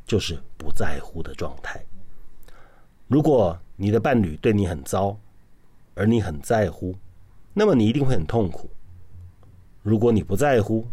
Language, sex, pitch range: Chinese, male, 90-115 Hz